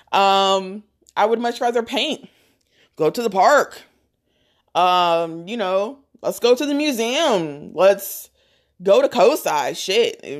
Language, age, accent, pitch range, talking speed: English, 20-39, American, 175-245 Hz, 135 wpm